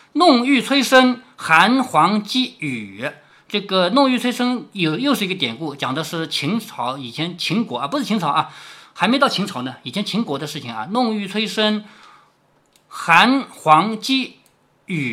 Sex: male